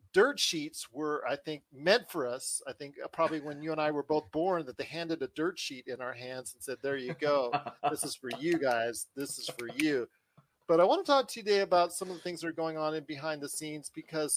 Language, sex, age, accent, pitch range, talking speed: English, male, 40-59, American, 145-185 Hz, 265 wpm